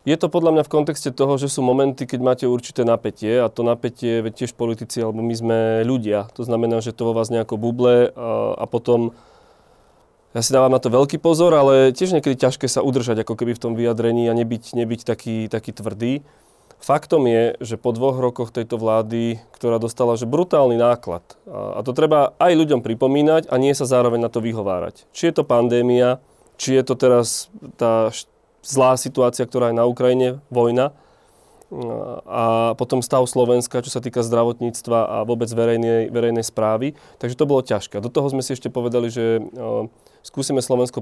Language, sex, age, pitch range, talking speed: Slovak, male, 30-49, 115-135 Hz, 185 wpm